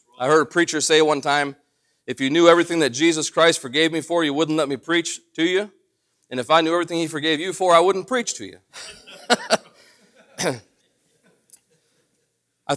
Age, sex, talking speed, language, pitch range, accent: 40-59, male, 185 wpm, English, 130-165 Hz, American